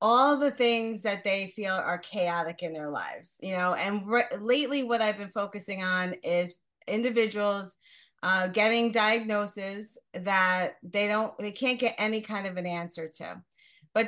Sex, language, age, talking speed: female, English, 30-49, 165 wpm